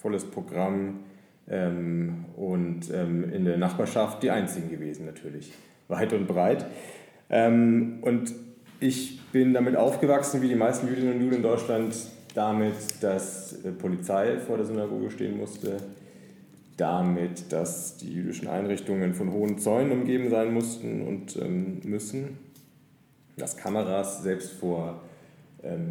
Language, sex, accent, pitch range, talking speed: German, male, German, 95-120 Hz, 130 wpm